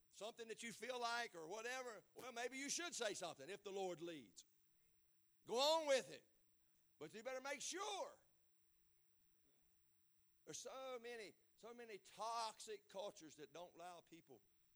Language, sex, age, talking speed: English, male, 50-69, 150 wpm